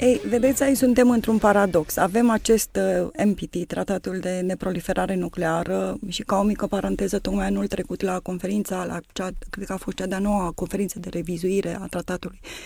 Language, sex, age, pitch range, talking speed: Romanian, female, 20-39, 185-225 Hz, 175 wpm